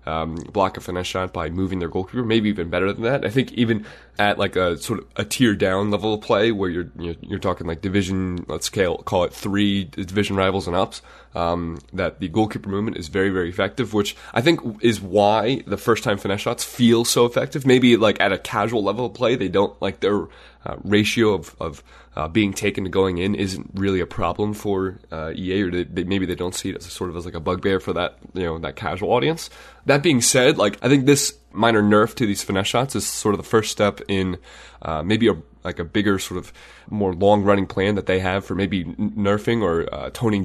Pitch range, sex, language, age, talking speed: 90-105 Hz, male, English, 20-39, 235 wpm